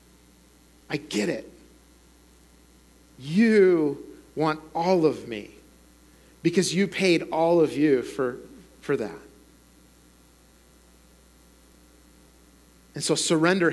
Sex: male